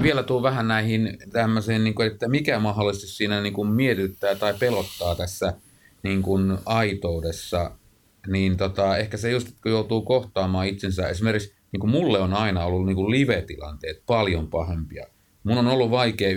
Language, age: Finnish, 30-49